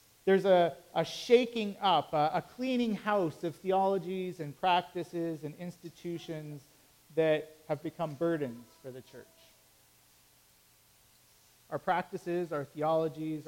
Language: English